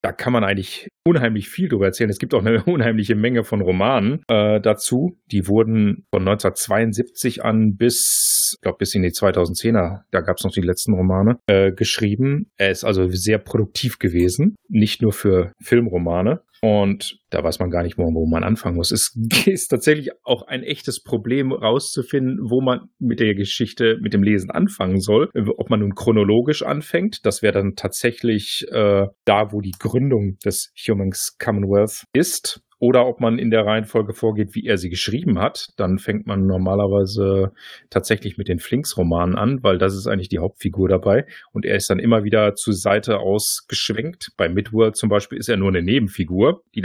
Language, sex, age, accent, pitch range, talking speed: German, male, 40-59, German, 95-115 Hz, 185 wpm